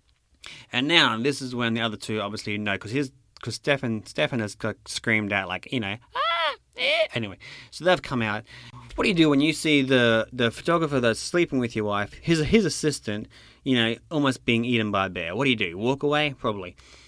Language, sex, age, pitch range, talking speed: English, male, 30-49, 105-140 Hz, 205 wpm